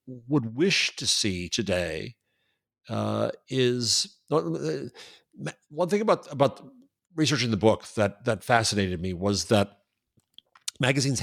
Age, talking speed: 50-69, 120 wpm